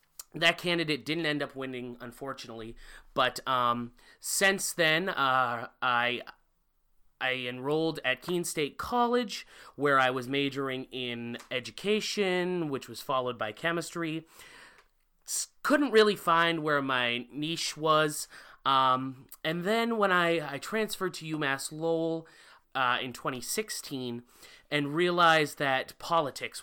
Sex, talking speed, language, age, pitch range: male, 125 wpm, English, 30-49, 125-160 Hz